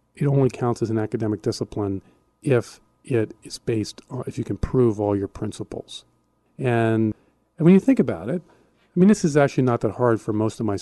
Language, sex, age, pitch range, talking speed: English, male, 40-59, 105-130 Hz, 205 wpm